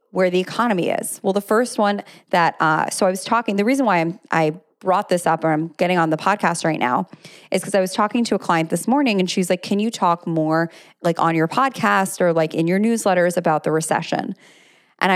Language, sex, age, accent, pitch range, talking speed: English, female, 20-39, American, 170-205 Hz, 240 wpm